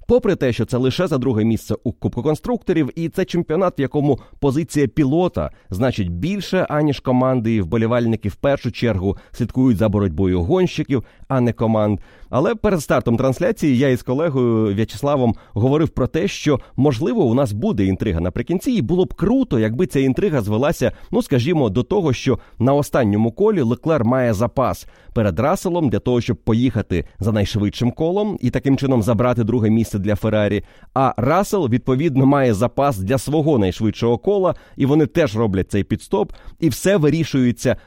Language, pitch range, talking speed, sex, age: Ukrainian, 115-165 Hz, 170 wpm, male, 30-49